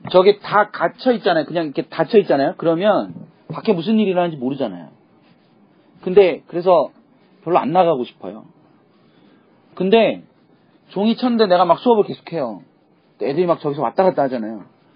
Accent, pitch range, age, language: native, 150-205 Hz, 40-59, Korean